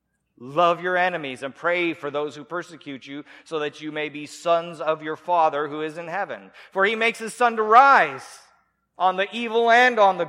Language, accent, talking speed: English, American, 210 wpm